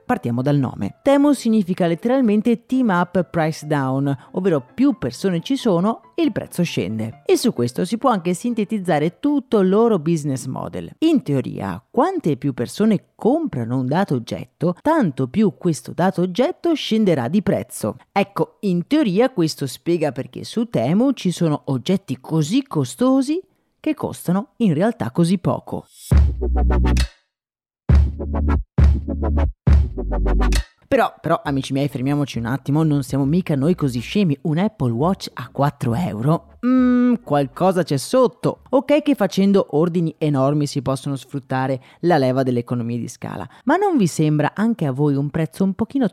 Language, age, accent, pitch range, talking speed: Italian, 40-59, native, 140-215 Hz, 145 wpm